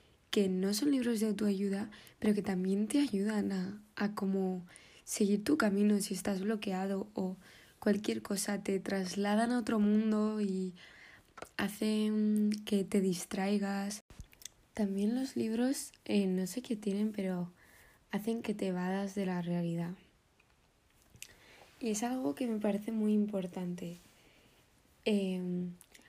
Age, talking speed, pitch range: 20-39, 135 wpm, 185-215 Hz